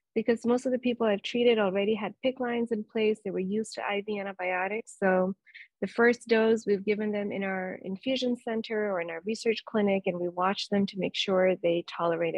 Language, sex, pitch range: English, female, 185-220 Hz